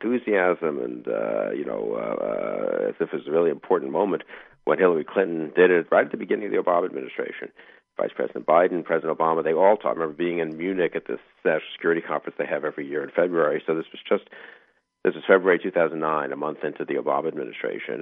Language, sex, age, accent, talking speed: English, male, 50-69, American, 210 wpm